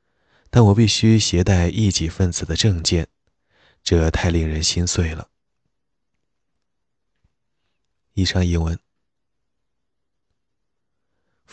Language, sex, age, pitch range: Chinese, male, 20-39, 80-95 Hz